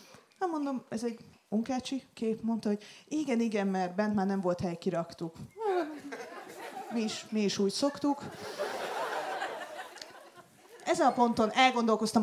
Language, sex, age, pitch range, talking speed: Hungarian, female, 20-39, 185-240 Hz, 130 wpm